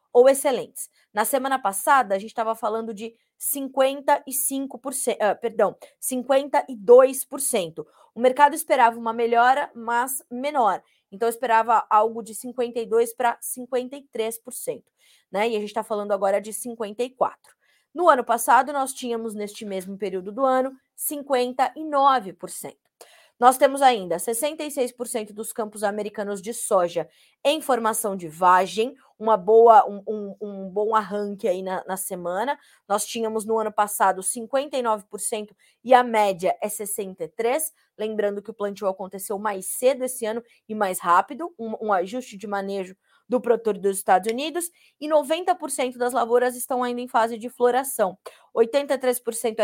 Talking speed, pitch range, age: 145 wpm, 210-265 Hz, 20-39